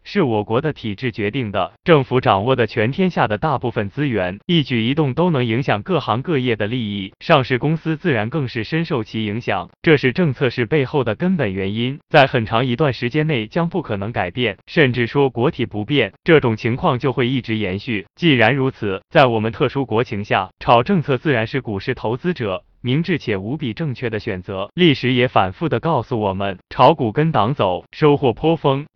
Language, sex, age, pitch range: Chinese, male, 20-39, 110-155 Hz